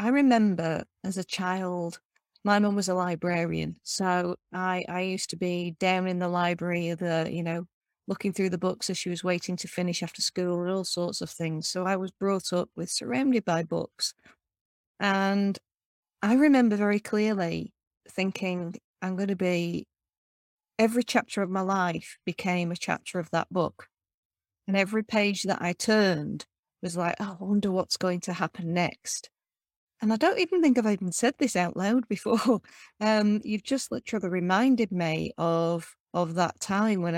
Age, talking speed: 30-49, 175 wpm